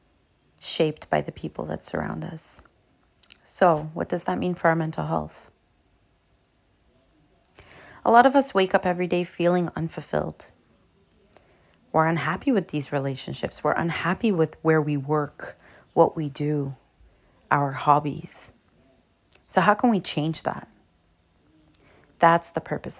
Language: English